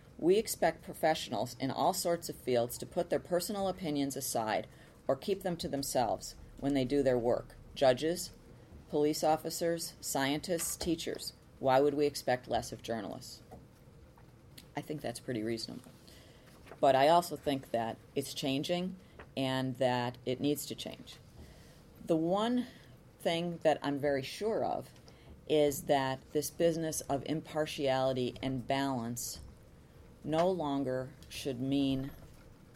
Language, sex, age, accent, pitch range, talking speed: English, female, 40-59, American, 130-160 Hz, 135 wpm